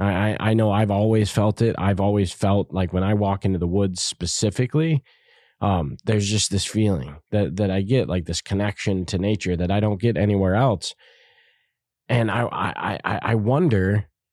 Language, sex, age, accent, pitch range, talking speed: English, male, 20-39, American, 100-120 Hz, 180 wpm